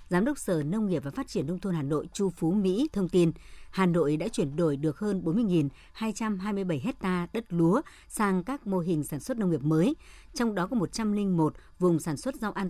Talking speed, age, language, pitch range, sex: 215 wpm, 60-79, Vietnamese, 165-210 Hz, male